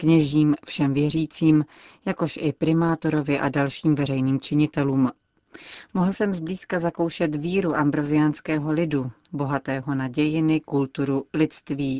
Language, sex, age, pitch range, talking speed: Czech, female, 40-59, 145-160 Hz, 105 wpm